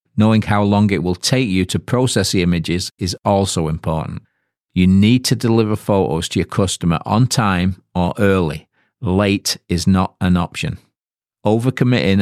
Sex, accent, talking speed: male, British, 155 wpm